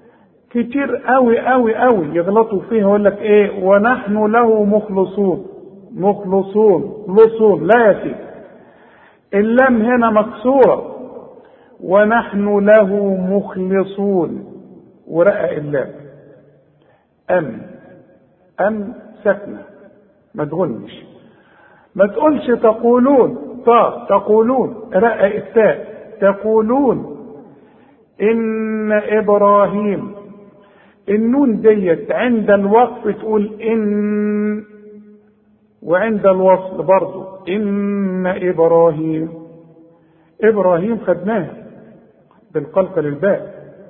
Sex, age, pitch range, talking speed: male, 50-69, 190-220 Hz, 70 wpm